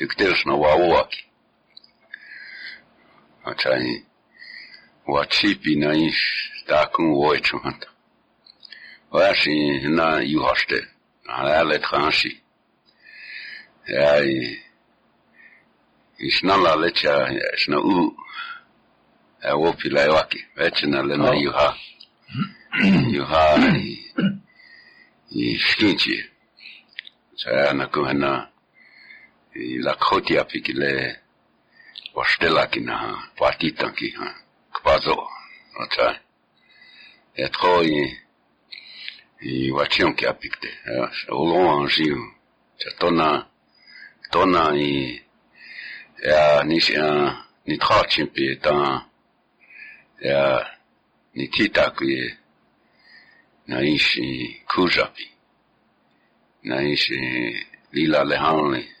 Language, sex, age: English, male, 60-79